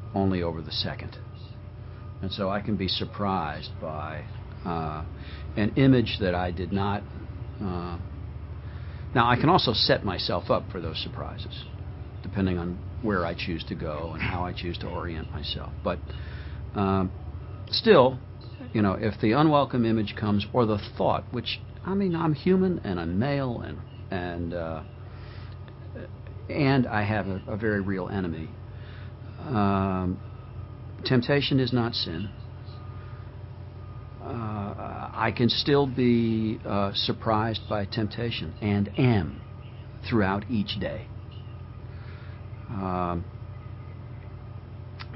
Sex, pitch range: male, 95-115 Hz